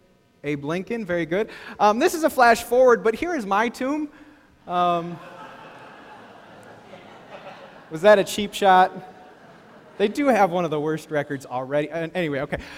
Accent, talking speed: American, 150 wpm